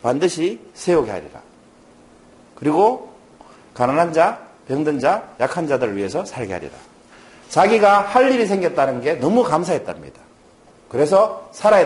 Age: 40-59